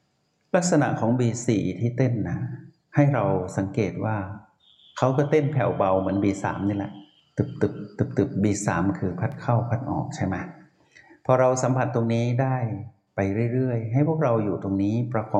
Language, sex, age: Thai, male, 60-79